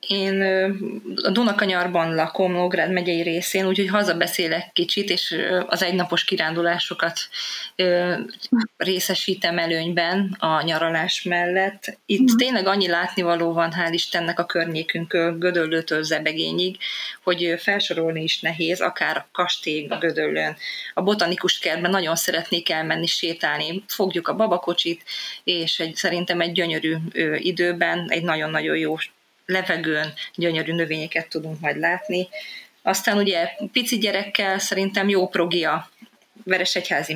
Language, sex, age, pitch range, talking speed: Hungarian, female, 20-39, 165-190 Hz, 115 wpm